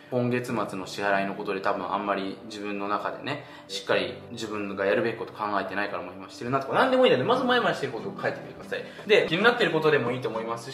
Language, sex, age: Japanese, male, 20-39